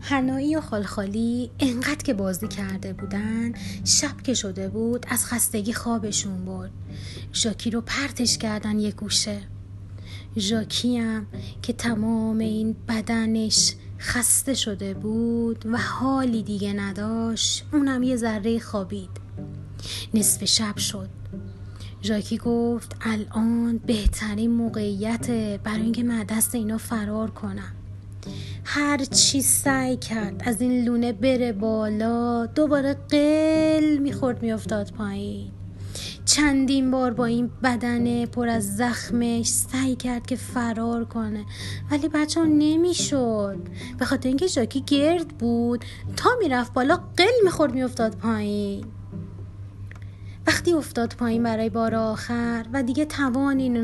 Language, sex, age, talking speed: Persian, female, 30-49, 120 wpm